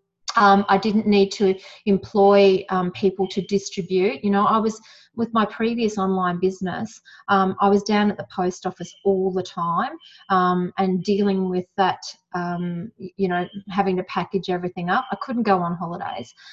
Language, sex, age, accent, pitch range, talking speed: English, female, 30-49, Australian, 185-215 Hz, 175 wpm